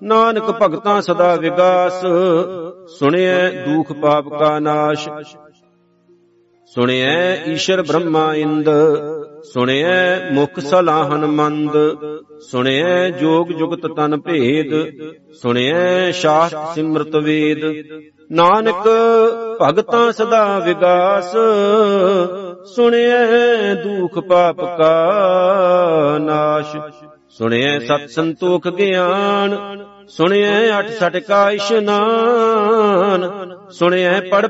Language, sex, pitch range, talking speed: Punjabi, male, 150-190 Hz, 80 wpm